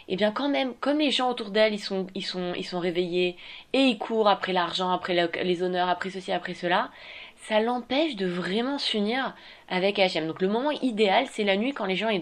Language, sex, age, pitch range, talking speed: French, female, 20-39, 185-250 Hz, 235 wpm